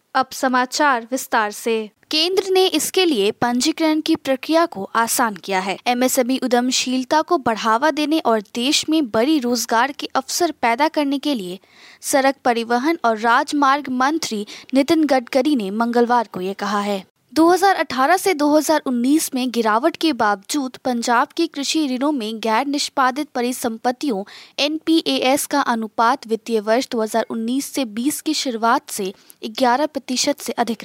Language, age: Hindi, 20-39